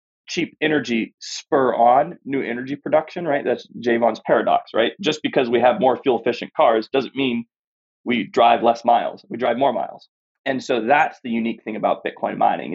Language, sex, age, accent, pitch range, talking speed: English, male, 30-49, American, 115-145 Hz, 185 wpm